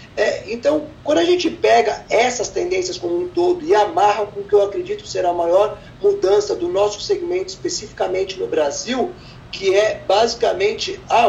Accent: Brazilian